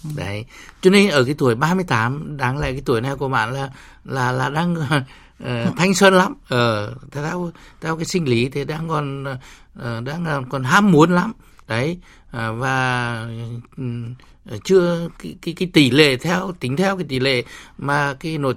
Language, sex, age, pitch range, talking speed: Vietnamese, male, 60-79, 120-160 Hz, 185 wpm